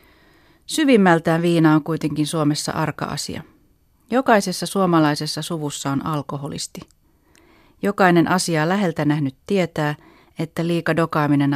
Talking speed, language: 95 wpm, Finnish